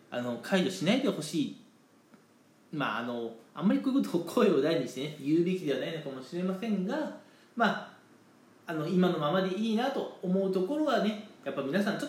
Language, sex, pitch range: Japanese, male, 150-235 Hz